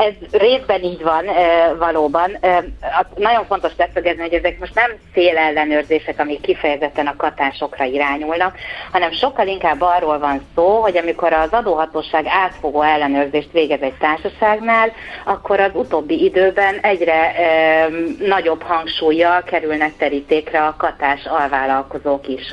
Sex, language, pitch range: female, Hungarian, 150-180 Hz